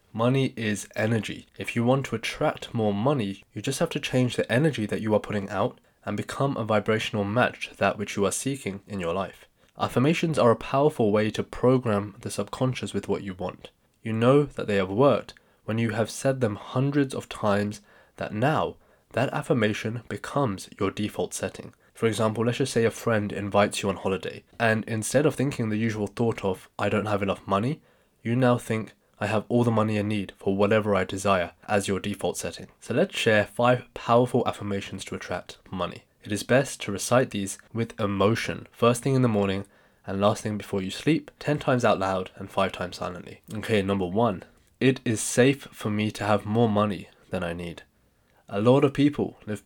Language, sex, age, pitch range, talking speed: English, male, 20-39, 100-120 Hz, 205 wpm